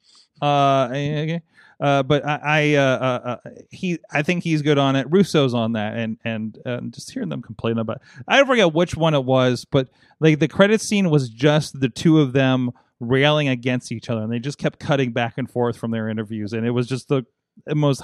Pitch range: 120-200 Hz